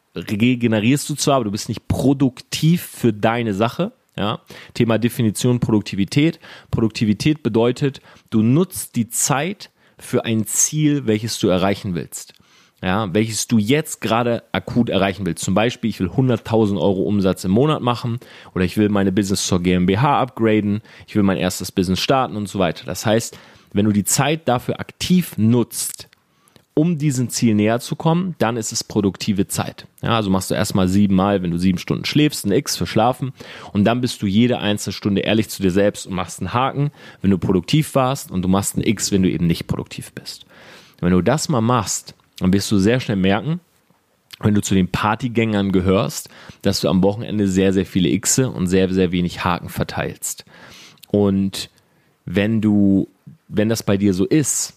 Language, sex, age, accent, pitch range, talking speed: German, male, 30-49, German, 100-125 Hz, 185 wpm